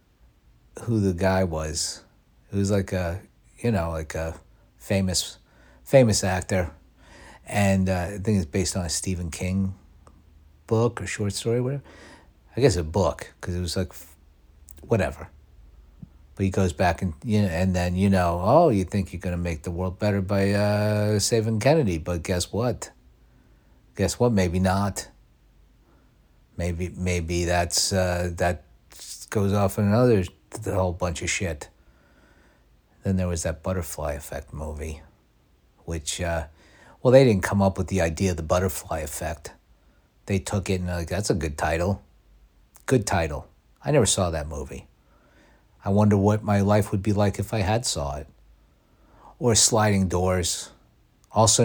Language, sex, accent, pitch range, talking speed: English, male, American, 80-105 Hz, 165 wpm